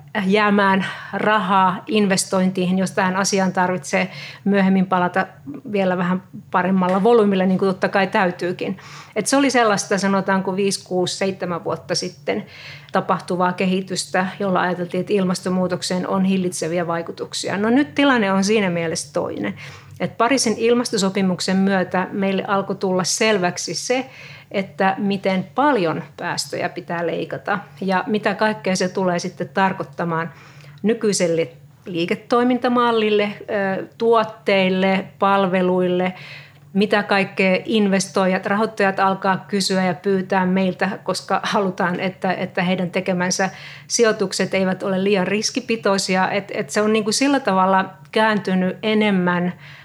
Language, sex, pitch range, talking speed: Finnish, female, 180-200 Hz, 120 wpm